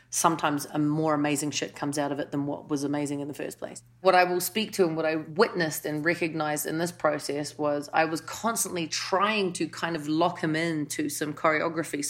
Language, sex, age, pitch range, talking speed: English, female, 30-49, 150-180 Hz, 220 wpm